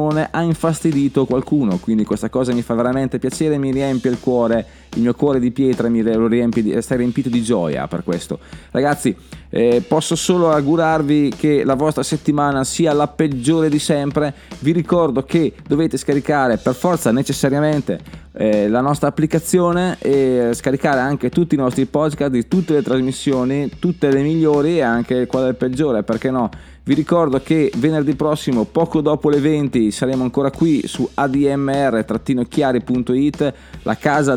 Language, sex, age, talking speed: Italian, male, 20-39, 150 wpm